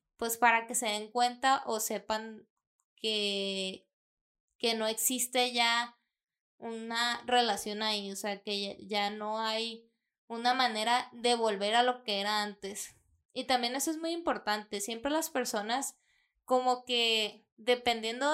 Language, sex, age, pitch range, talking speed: Spanish, female, 20-39, 220-265 Hz, 140 wpm